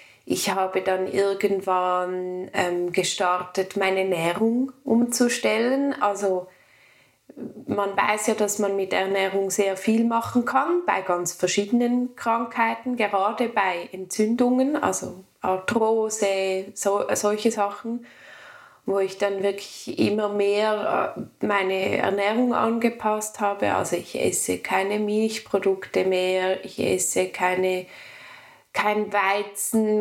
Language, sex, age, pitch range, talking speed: German, female, 20-39, 195-230 Hz, 110 wpm